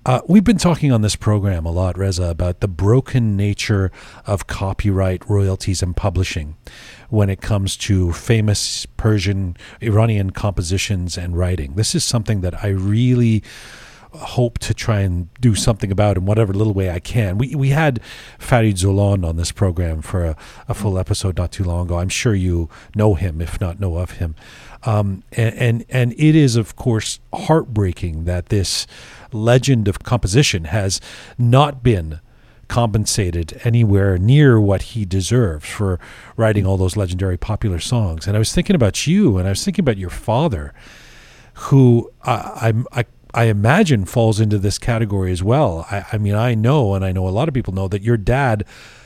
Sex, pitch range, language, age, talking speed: male, 95-120 Hz, English, 40-59, 175 wpm